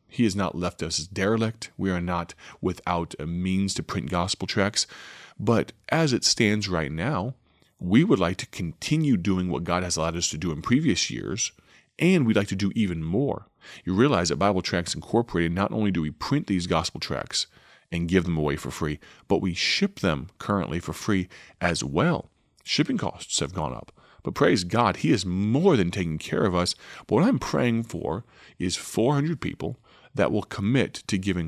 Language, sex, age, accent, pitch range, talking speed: English, male, 30-49, American, 85-105 Hz, 200 wpm